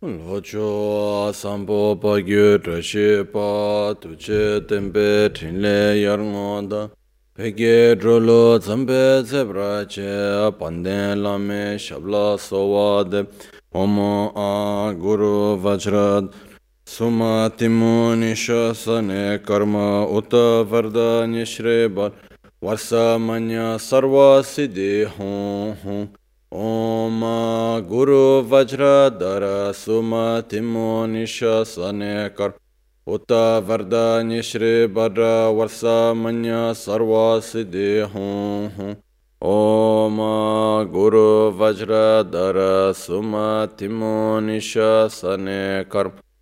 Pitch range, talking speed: 100-115 Hz, 60 wpm